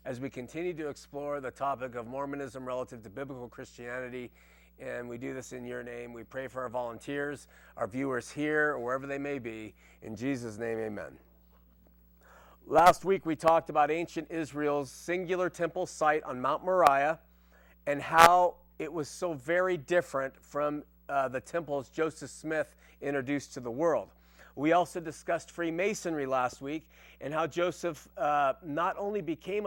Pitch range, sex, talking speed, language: 125-170 Hz, male, 160 wpm, English